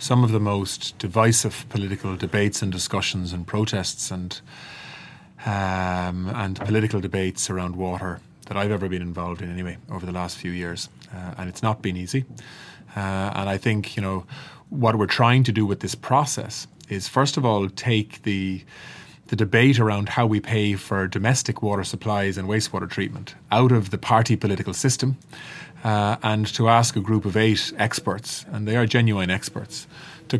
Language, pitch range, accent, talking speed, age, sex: English, 95-120 Hz, Irish, 180 wpm, 30-49, male